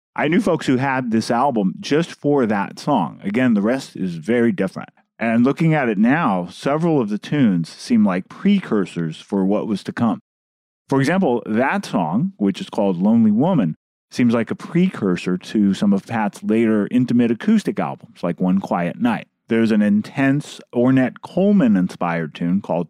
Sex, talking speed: male, 175 wpm